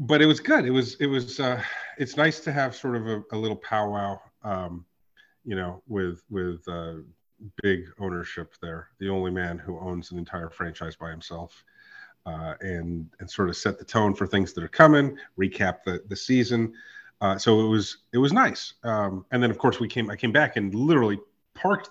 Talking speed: 205 wpm